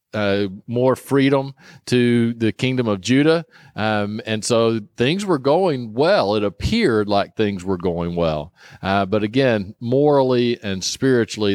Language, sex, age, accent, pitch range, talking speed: English, male, 40-59, American, 100-125 Hz, 145 wpm